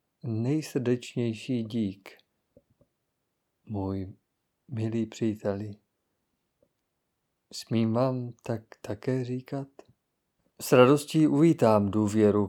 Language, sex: Czech, male